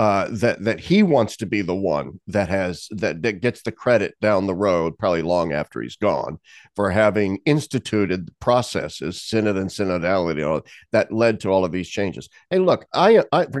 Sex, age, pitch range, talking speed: male, 50-69, 90-130 Hz, 205 wpm